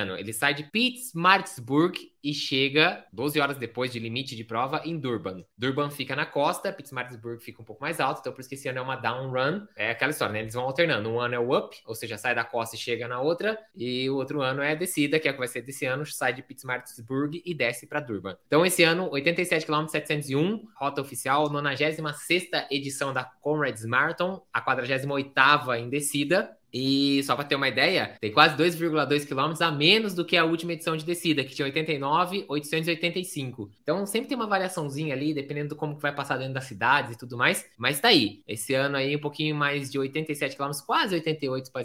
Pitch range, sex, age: 130-170 Hz, male, 20-39